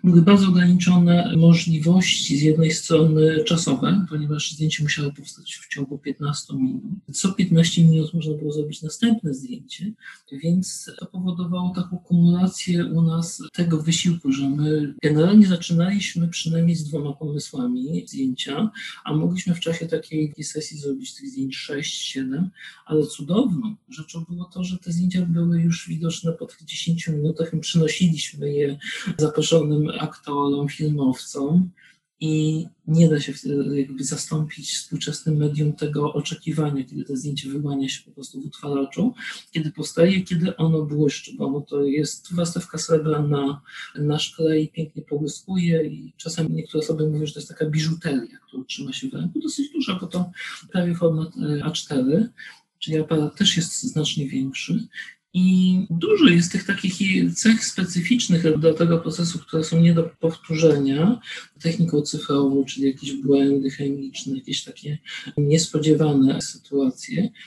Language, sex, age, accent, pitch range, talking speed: Polish, male, 50-69, native, 150-180 Hz, 145 wpm